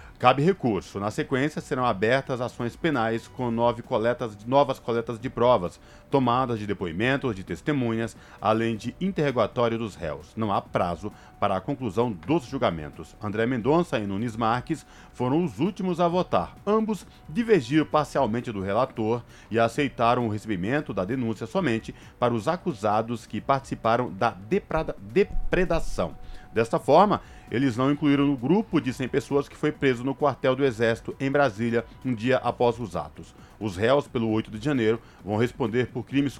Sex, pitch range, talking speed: male, 110-145 Hz, 160 wpm